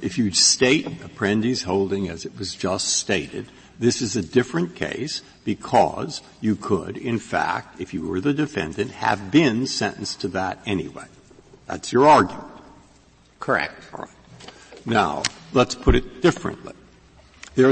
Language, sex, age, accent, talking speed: English, male, 60-79, American, 140 wpm